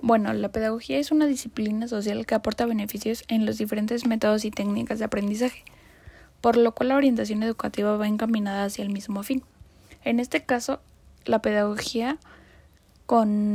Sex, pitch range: female, 210-240 Hz